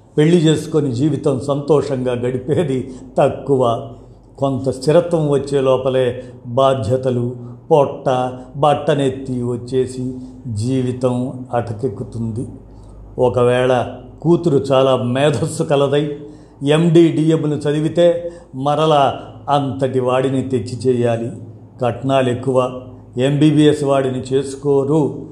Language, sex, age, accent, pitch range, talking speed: Telugu, male, 50-69, native, 125-145 Hz, 80 wpm